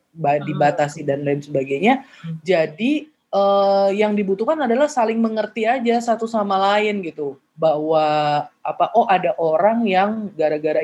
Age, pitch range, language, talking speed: 30-49, 165-215 Hz, Indonesian, 125 wpm